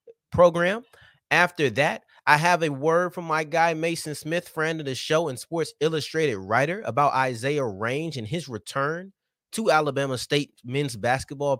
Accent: American